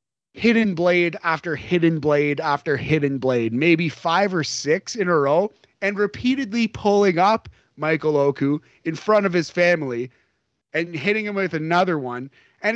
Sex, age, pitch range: male, 30-49, 150-205 Hz